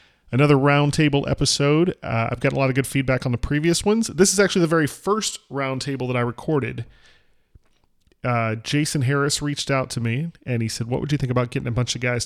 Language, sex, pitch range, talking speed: English, male, 125-155 Hz, 220 wpm